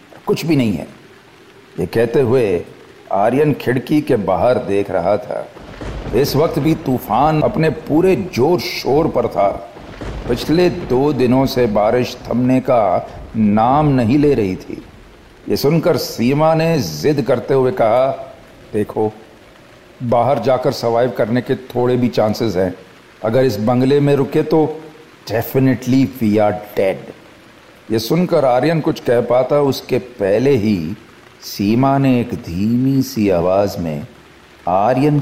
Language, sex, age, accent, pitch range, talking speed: Hindi, male, 50-69, native, 110-145 Hz, 140 wpm